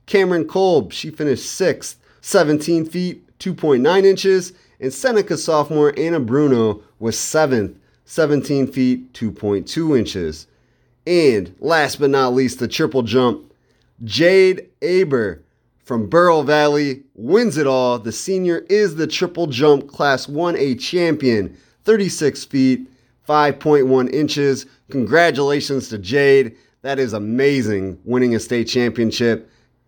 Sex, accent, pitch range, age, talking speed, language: male, American, 120-155 Hz, 30-49, 120 wpm, English